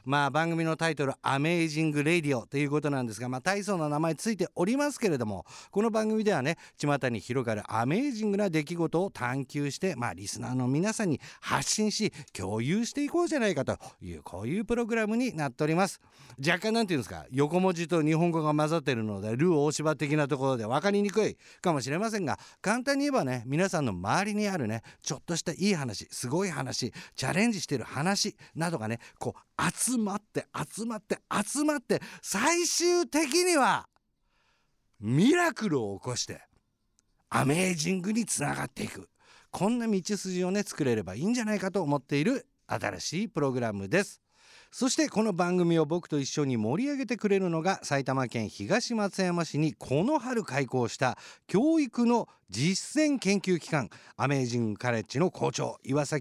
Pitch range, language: 140-215 Hz, Japanese